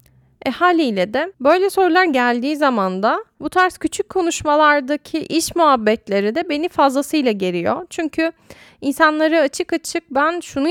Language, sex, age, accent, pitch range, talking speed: Turkish, female, 10-29, native, 220-315 Hz, 135 wpm